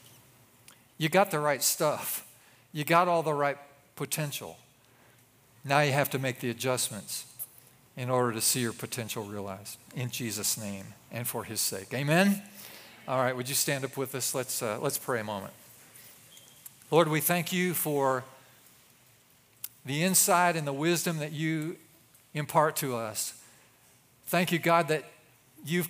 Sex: male